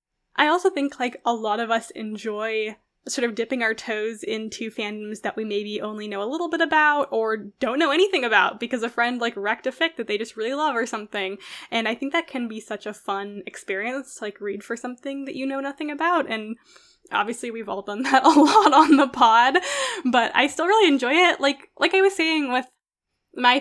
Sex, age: female, 10-29